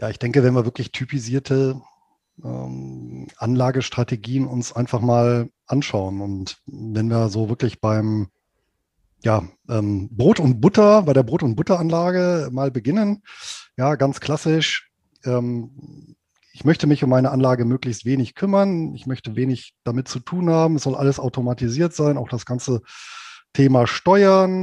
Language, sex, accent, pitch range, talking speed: German, male, German, 125-155 Hz, 150 wpm